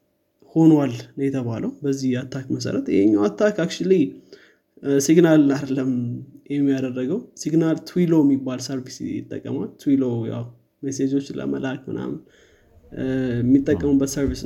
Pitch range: 135-150 Hz